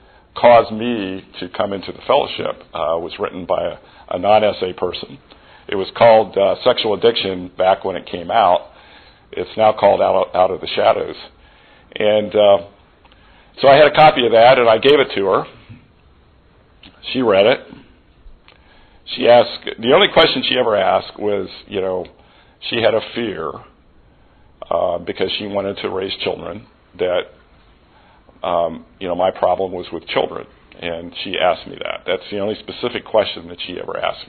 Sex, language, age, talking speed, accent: male, English, 50-69, 175 wpm, American